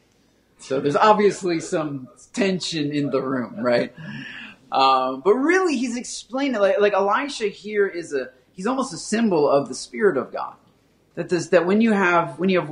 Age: 30-49